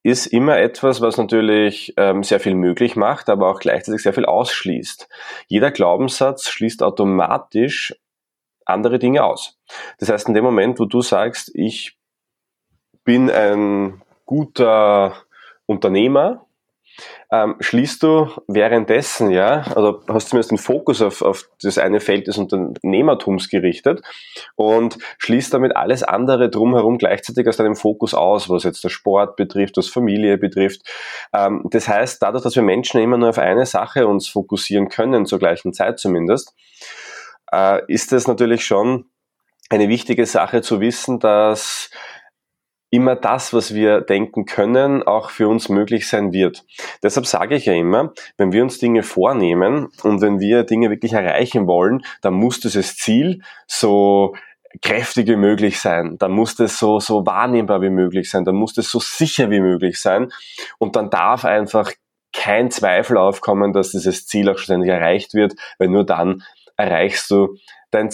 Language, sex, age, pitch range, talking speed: German, male, 20-39, 100-120 Hz, 155 wpm